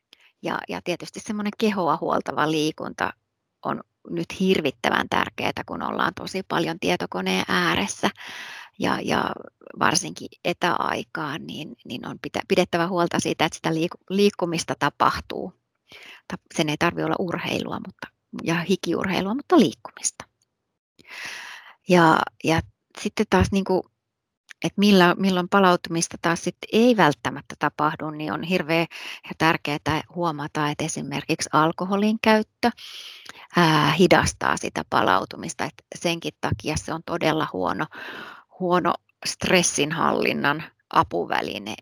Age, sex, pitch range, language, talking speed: 30-49, female, 150-190 Hz, Finnish, 110 wpm